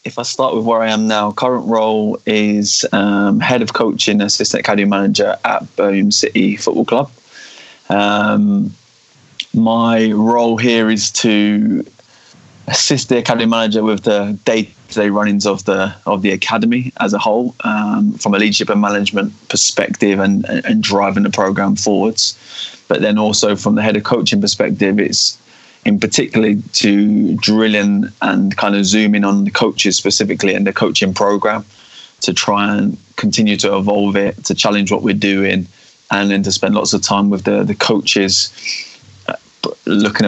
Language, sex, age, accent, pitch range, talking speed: English, male, 20-39, British, 100-115 Hz, 165 wpm